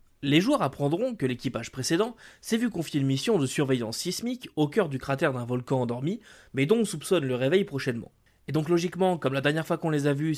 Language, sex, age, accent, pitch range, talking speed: French, male, 20-39, French, 135-175 Hz, 225 wpm